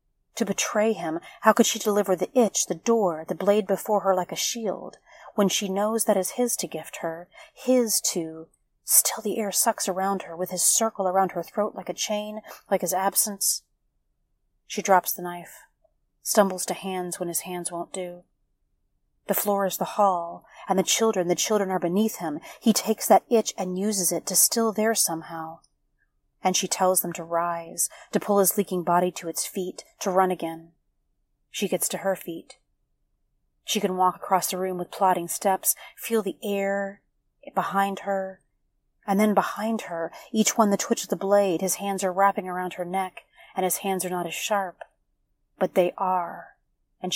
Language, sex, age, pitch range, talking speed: English, female, 30-49, 175-205 Hz, 190 wpm